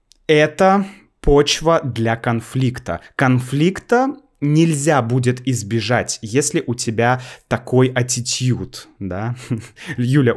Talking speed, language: 85 wpm, Russian